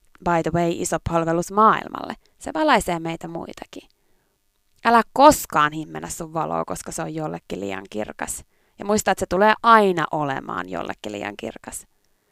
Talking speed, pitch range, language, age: 150 wpm, 155-235 Hz, Finnish, 20-39